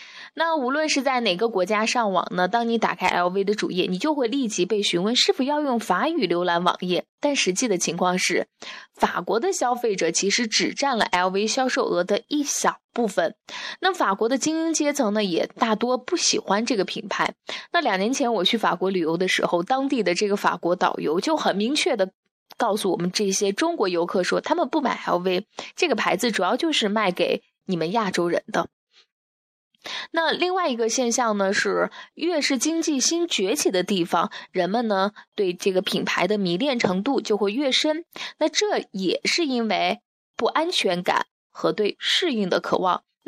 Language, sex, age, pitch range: Chinese, female, 20-39, 185-285 Hz